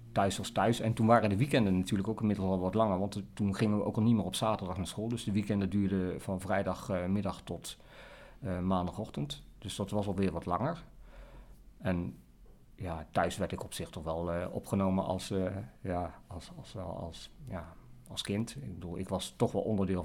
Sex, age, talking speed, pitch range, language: male, 50-69, 185 wpm, 95-110 Hz, Dutch